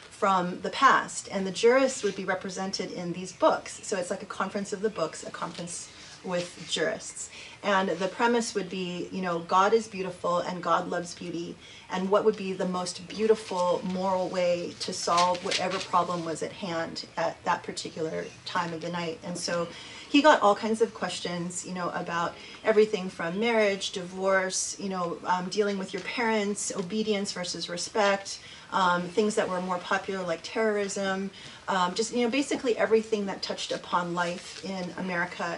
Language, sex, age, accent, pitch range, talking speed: English, female, 30-49, American, 175-205 Hz, 180 wpm